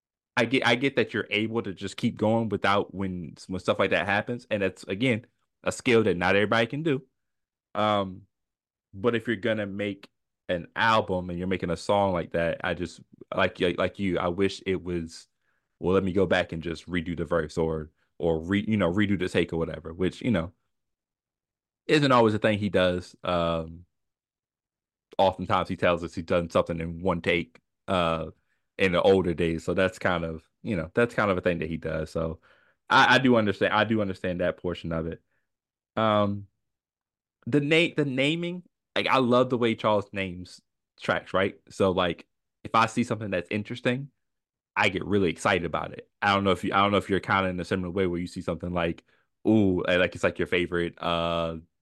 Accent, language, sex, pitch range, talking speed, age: American, English, male, 85-110 Hz, 210 wpm, 20-39